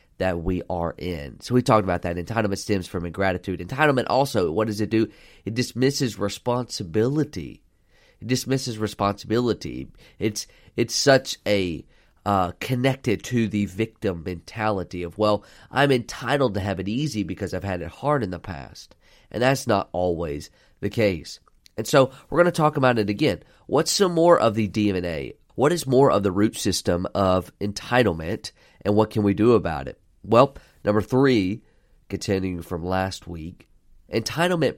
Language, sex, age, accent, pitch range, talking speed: English, male, 30-49, American, 95-115 Hz, 165 wpm